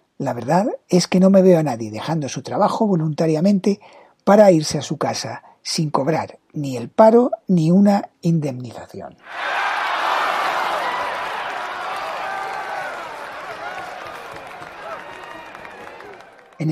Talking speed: 95 wpm